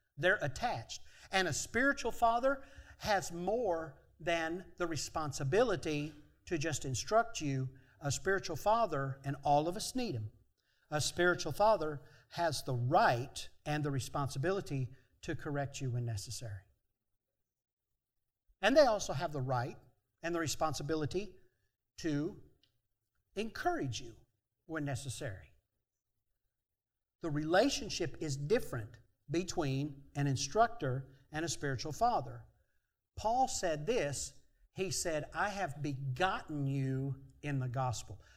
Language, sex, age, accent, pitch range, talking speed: English, male, 50-69, American, 130-180 Hz, 115 wpm